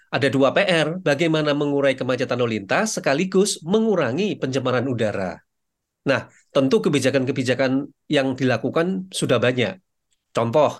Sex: male